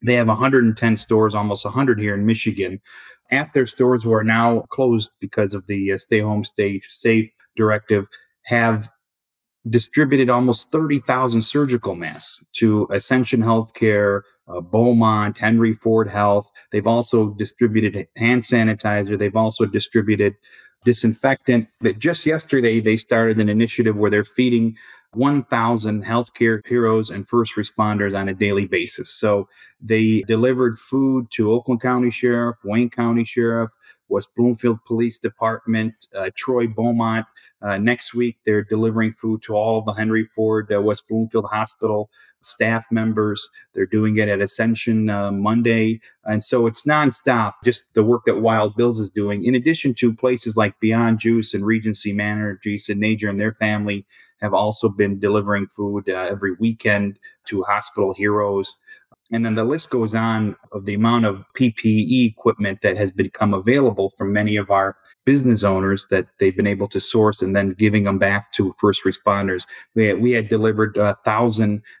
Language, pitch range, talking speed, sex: English, 105-120 Hz, 155 wpm, male